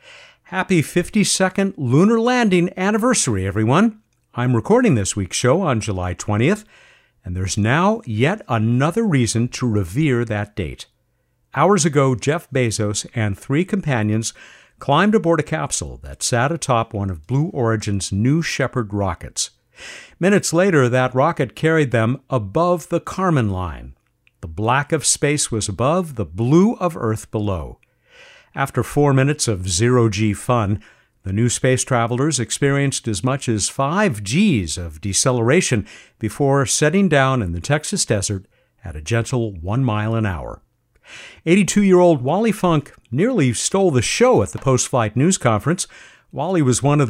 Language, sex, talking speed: English, male, 140 wpm